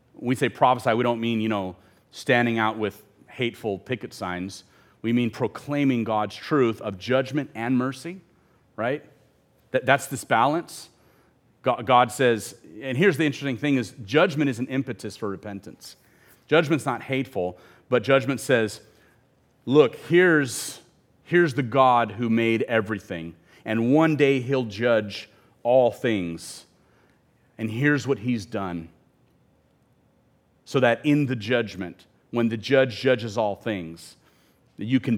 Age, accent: 30-49, American